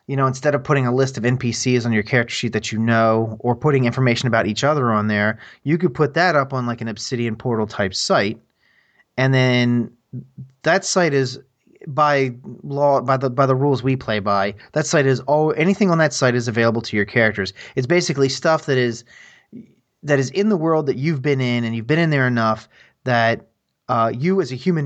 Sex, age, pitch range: male, 30-49, 115-140 Hz